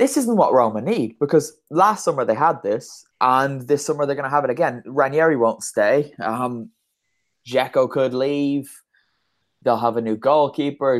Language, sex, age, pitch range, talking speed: English, male, 10-29, 110-140 Hz, 175 wpm